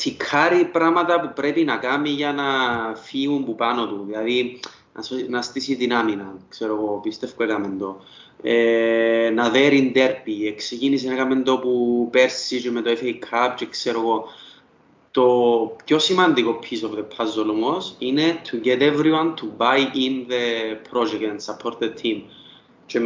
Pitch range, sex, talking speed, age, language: 115-150 Hz, male, 155 wpm, 20-39, Greek